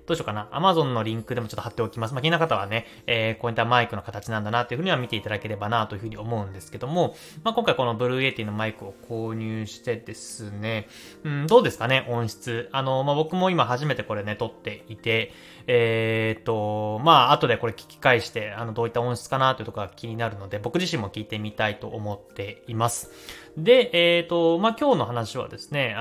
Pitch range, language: 110-165 Hz, Japanese